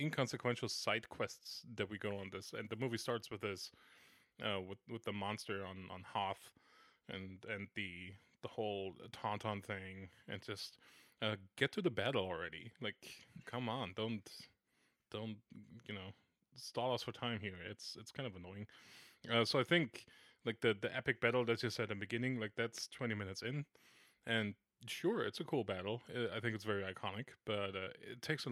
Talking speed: 190 wpm